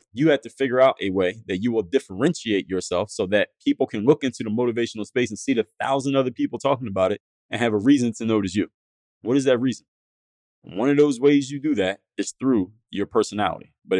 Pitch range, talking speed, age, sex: 95-125 Hz, 225 wpm, 20-39, male